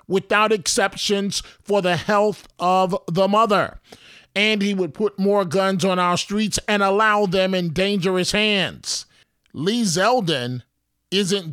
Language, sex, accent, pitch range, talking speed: English, male, American, 170-205 Hz, 135 wpm